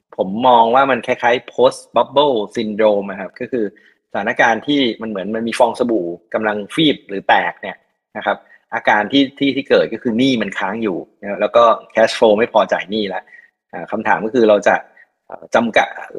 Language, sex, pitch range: Thai, male, 100-125 Hz